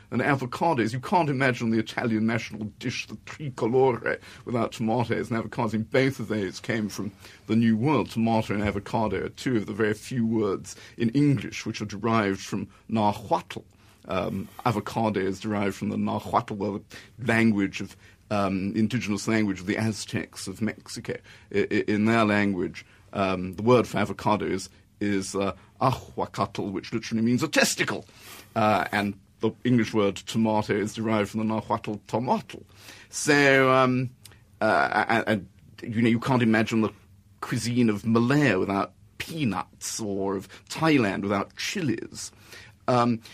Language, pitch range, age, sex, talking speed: English, 105-120 Hz, 50-69, male, 150 wpm